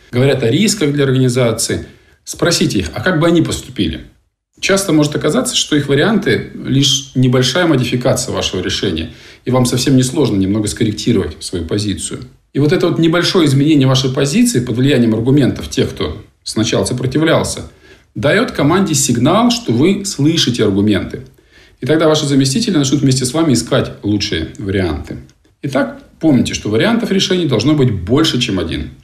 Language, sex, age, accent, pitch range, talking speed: Russian, male, 40-59, native, 110-150 Hz, 155 wpm